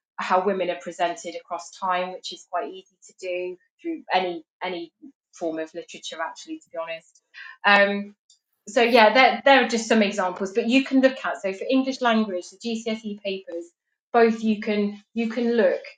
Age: 20-39